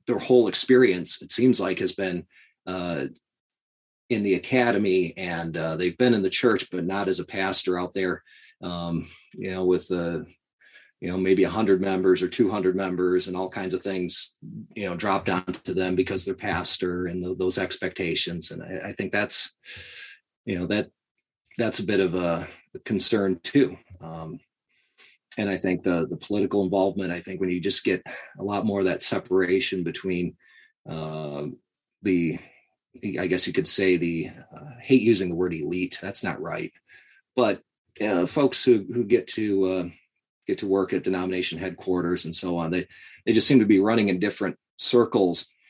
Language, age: English, 30-49